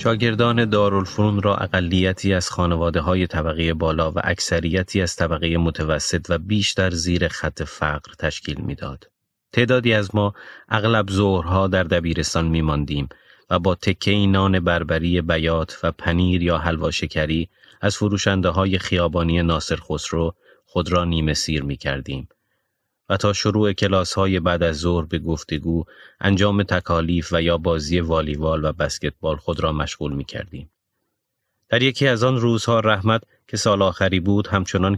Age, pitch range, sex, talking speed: 30-49, 85-100 Hz, male, 150 wpm